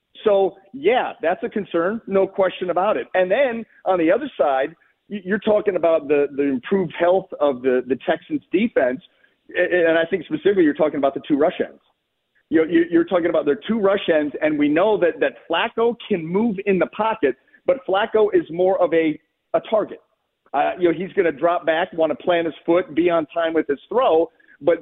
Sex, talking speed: male, 205 wpm